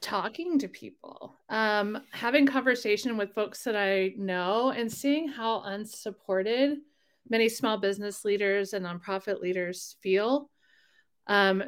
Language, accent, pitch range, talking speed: English, American, 190-230 Hz, 125 wpm